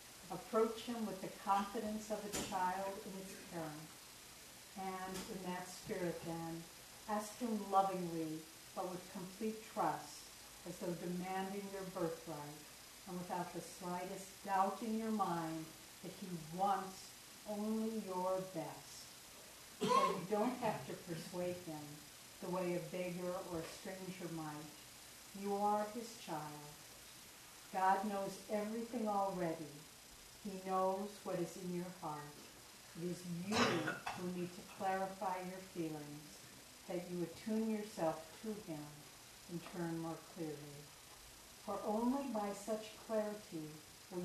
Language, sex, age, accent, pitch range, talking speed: English, female, 60-79, American, 165-200 Hz, 130 wpm